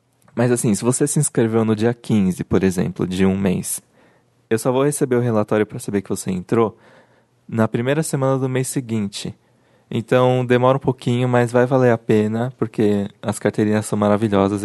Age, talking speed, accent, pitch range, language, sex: 20-39, 185 wpm, Brazilian, 100-125 Hz, Portuguese, male